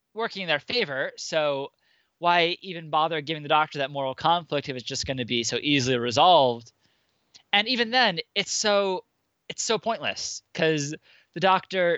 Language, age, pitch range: English, 20-39, 135-180 Hz